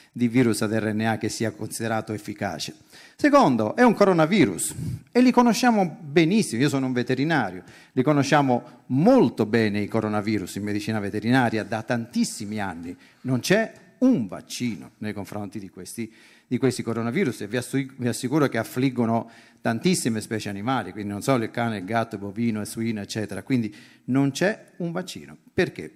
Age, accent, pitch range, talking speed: 40-59, native, 110-145 Hz, 160 wpm